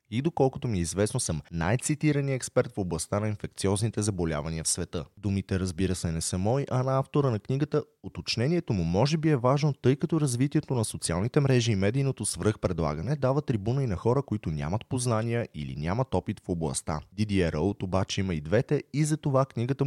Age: 30-49